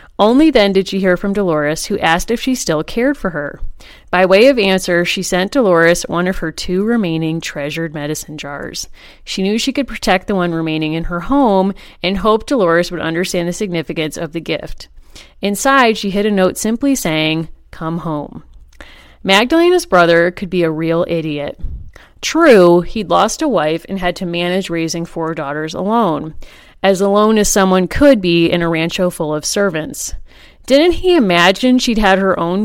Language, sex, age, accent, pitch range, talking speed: English, female, 30-49, American, 170-230 Hz, 180 wpm